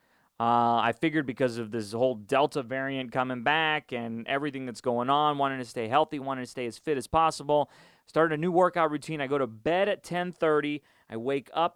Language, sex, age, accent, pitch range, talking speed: English, male, 30-49, American, 115-150 Hz, 210 wpm